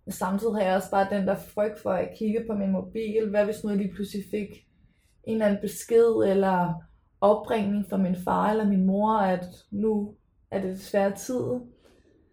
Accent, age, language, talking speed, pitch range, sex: native, 20-39, Danish, 190 wpm, 195-215 Hz, female